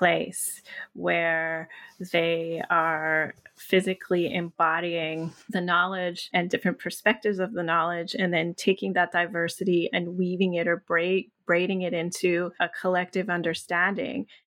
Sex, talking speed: female, 125 wpm